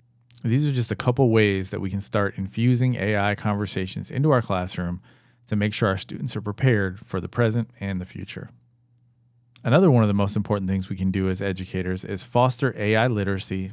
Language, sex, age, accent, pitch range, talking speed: English, male, 40-59, American, 100-120 Hz, 195 wpm